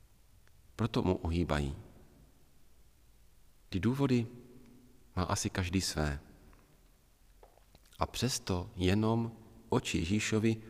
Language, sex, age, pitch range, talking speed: Czech, male, 40-59, 80-105 Hz, 80 wpm